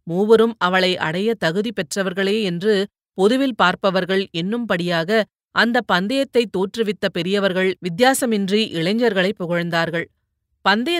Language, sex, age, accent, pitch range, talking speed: Tamil, female, 30-49, native, 180-225 Hz, 95 wpm